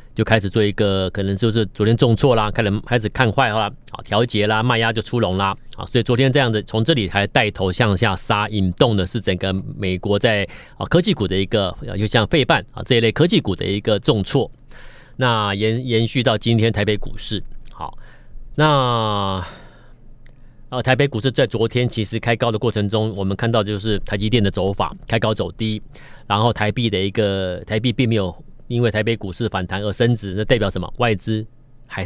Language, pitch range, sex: Chinese, 105-125 Hz, male